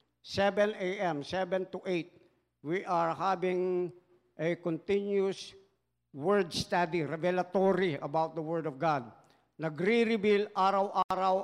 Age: 50-69